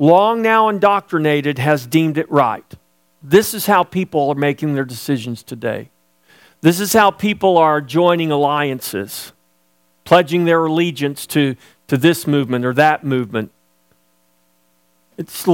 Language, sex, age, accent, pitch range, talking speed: English, male, 50-69, American, 125-190 Hz, 130 wpm